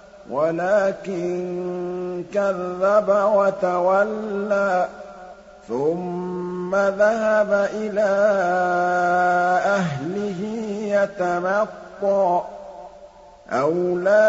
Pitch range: 180-205 Hz